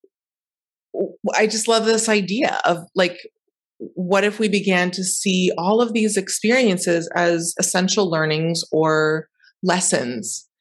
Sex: female